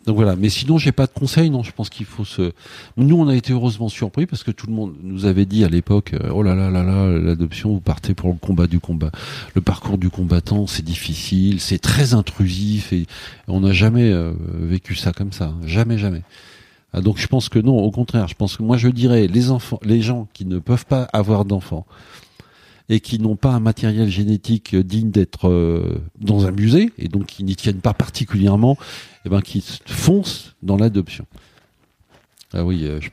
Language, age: French, 50-69